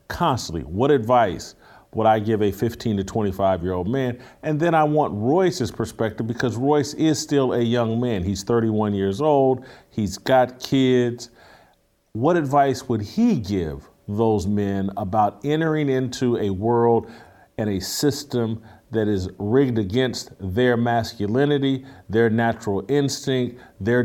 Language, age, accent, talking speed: English, 50-69, American, 145 wpm